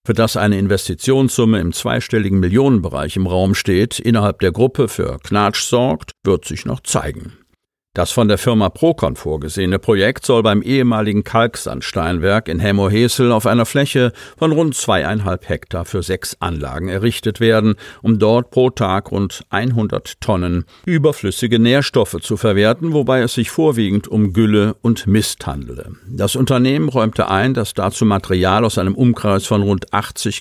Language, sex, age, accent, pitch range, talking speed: German, male, 50-69, German, 95-120 Hz, 155 wpm